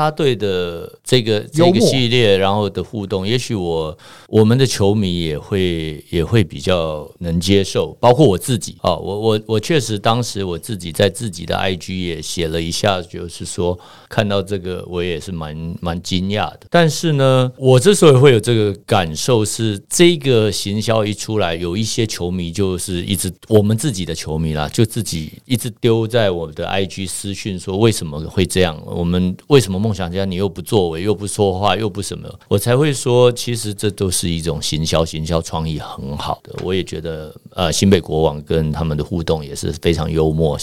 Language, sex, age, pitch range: Chinese, male, 50-69, 85-110 Hz